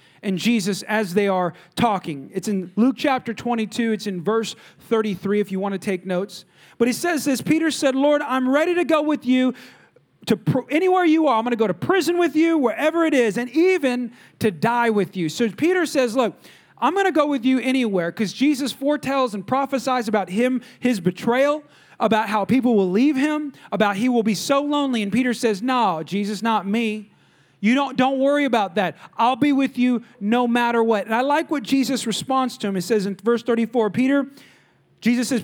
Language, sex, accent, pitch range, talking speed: English, male, American, 190-260 Hz, 210 wpm